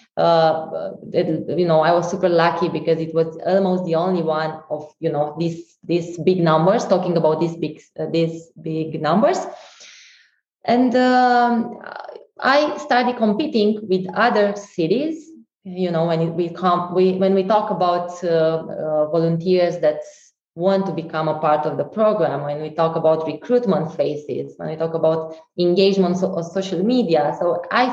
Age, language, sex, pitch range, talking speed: 20-39, English, female, 165-205 Hz, 165 wpm